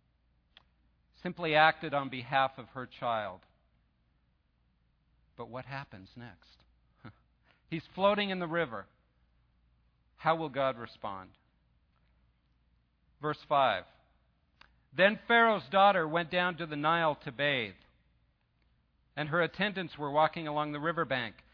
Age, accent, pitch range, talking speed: 50-69, American, 110-180 Hz, 110 wpm